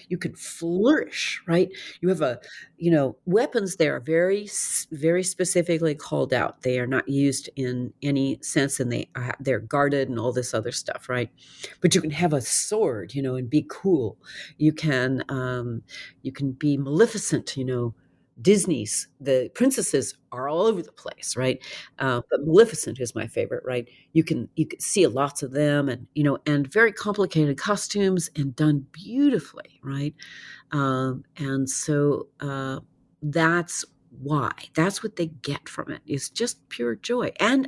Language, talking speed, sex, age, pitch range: English, 165 wpm, female, 50-69, 130-170 Hz